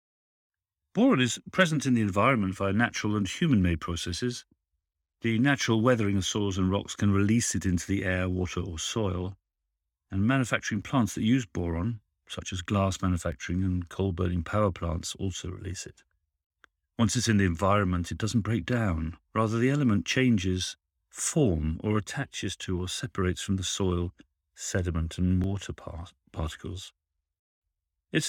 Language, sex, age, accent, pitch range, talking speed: English, male, 50-69, British, 85-110 Hz, 150 wpm